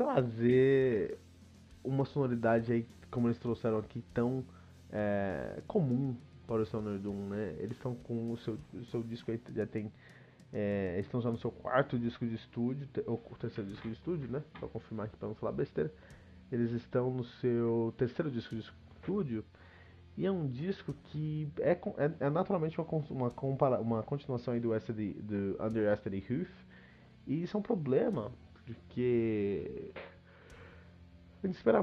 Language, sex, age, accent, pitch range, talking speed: Portuguese, male, 20-39, Brazilian, 105-135 Hz, 160 wpm